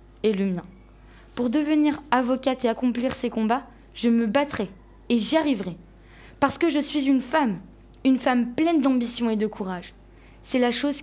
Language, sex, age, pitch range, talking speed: French, female, 20-39, 215-260 Hz, 175 wpm